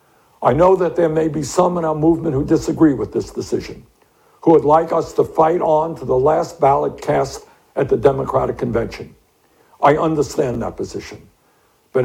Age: 60-79